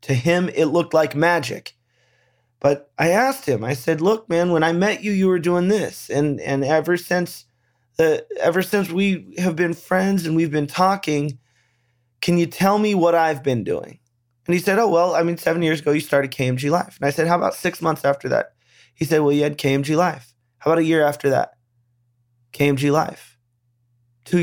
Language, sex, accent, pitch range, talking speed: English, male, American, 125-170 Hz, 205 wpm